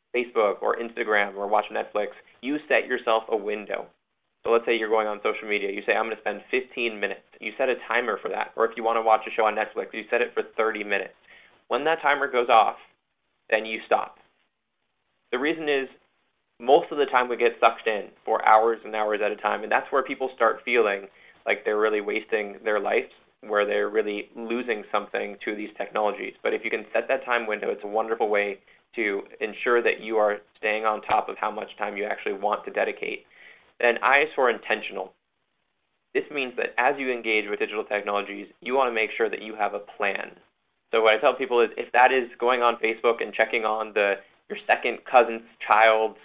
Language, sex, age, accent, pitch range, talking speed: English, male, 20-39, American, 105-135 Hz, 215 wpm